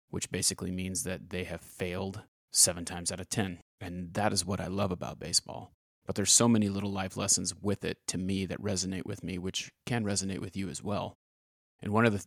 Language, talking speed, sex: English, 225 wpm, male